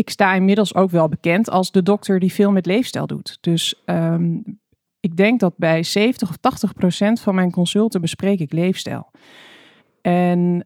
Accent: Dutch